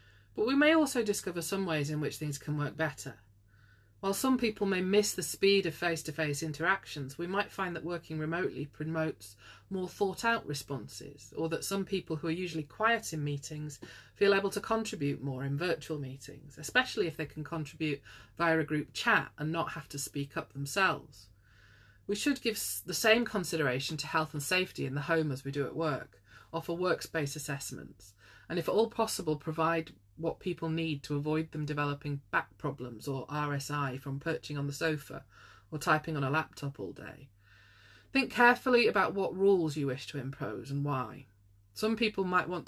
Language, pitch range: English, 135-170 Hz